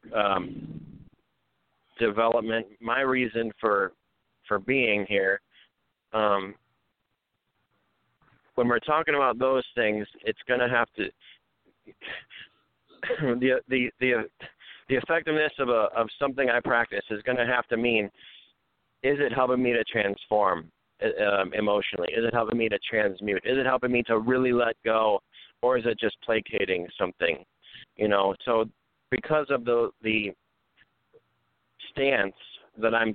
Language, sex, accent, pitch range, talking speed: English, male, American, 105-130 Hz, 130 wpm